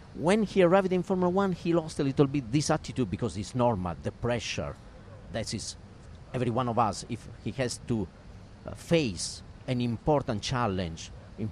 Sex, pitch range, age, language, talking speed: male, 100-135 Hz, 50-69, Swedish, 175 wpm